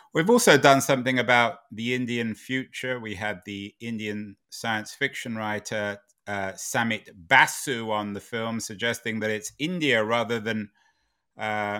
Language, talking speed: English, 140 wpm